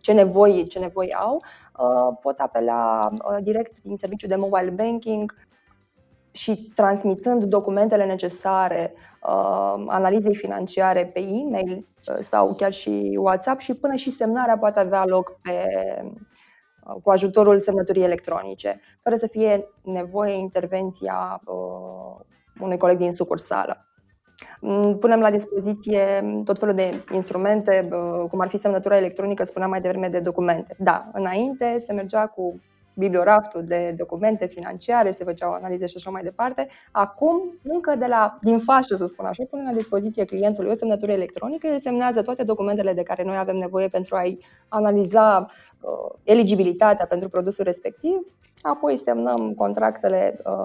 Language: Romanian